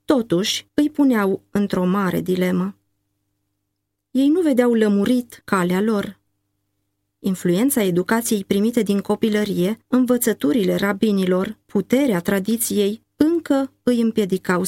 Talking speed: 100 wpm